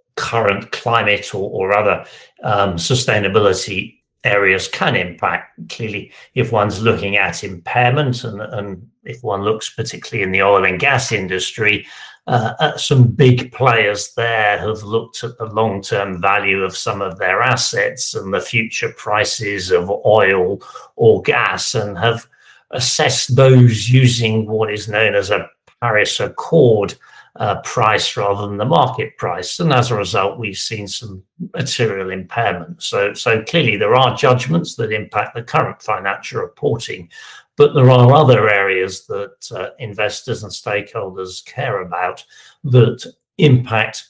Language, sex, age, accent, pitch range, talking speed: English, male, 60-79, British, 100-125 Hz, 145 wpm